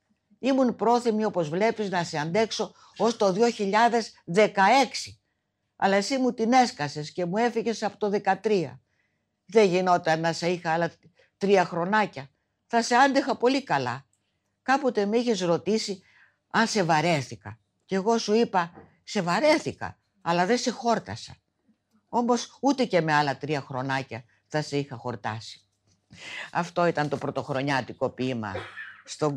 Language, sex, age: Greek, female, 50-69